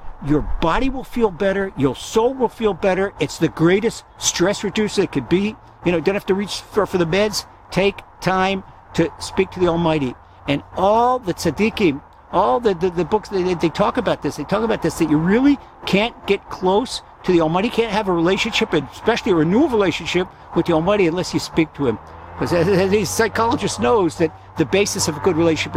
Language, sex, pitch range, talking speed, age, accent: English, male, 155-195 Hz, 210 wpm, 60-79, American